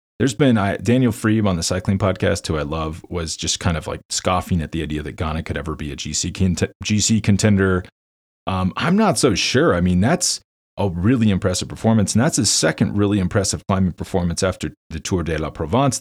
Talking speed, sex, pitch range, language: 205 wpm, male, 85-115 Hz, English